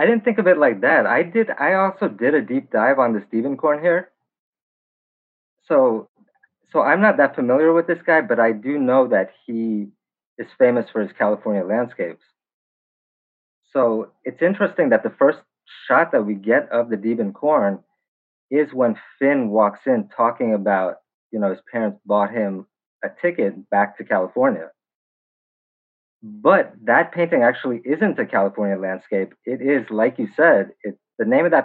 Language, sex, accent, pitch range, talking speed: English, male, American, 105-170 Hz, 170 wpm